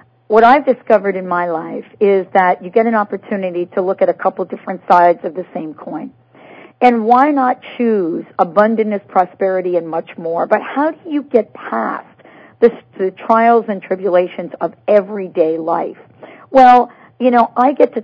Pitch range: 190-245 Hz